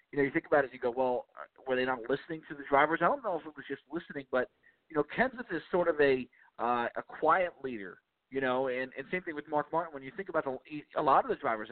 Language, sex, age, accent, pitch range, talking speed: English, male, 40-59, American, 130-165 Hz, 280 wpm